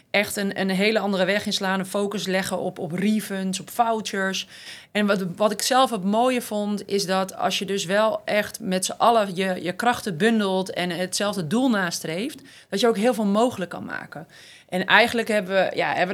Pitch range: 180-215 Hz